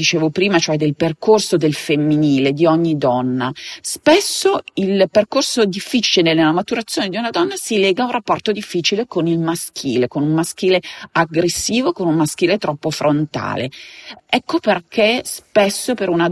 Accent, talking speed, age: native, 155 wpm, 40-59